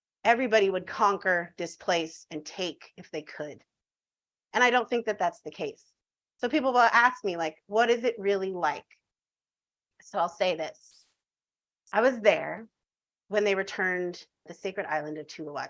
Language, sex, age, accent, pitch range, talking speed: English, female, 30-49, American, 170-205 Hz, 170 wpm